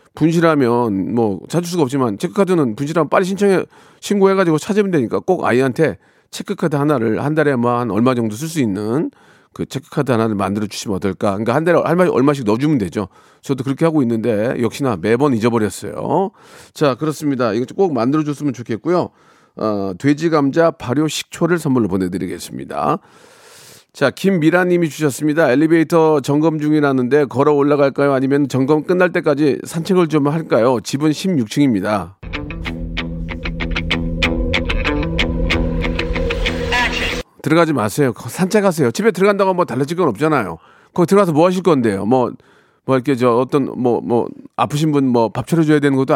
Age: 40-59